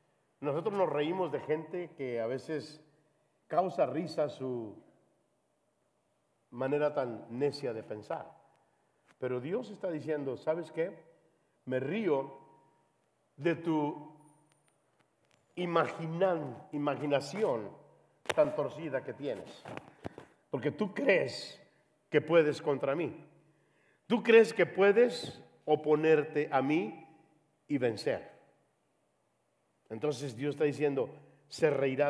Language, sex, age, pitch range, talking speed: English, male, 50-69, 135-160 Hz, 100 wpm